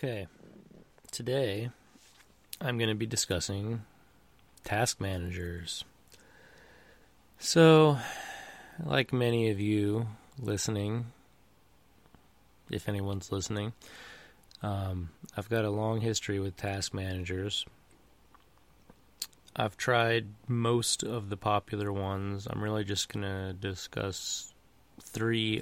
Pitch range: 95-110 Hz